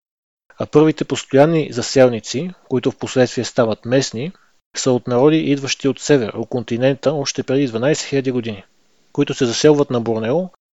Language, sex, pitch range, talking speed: Bulgarian, male, 125-145 Hz, 150 wpm